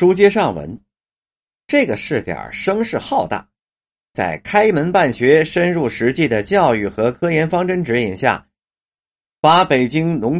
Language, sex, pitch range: Chinese, male, 130-200 Hz